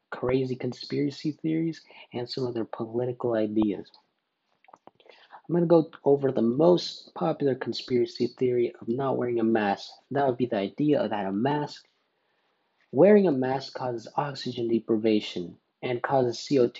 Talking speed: 150 wpm